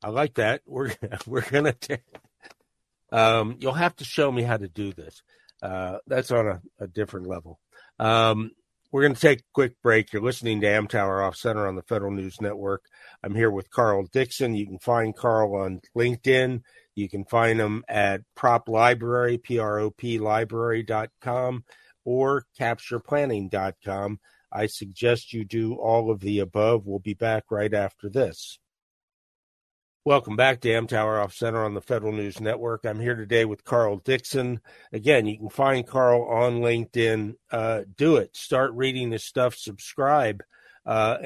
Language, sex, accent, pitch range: English, male, American, 105-120 Hz